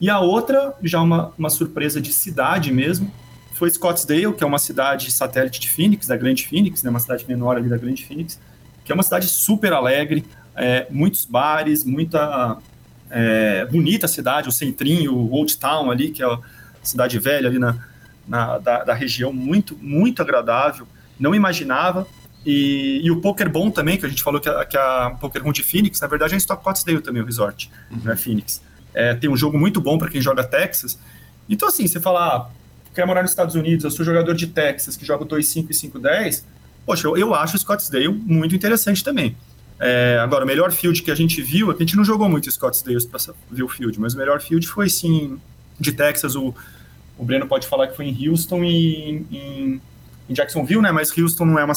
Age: 40-59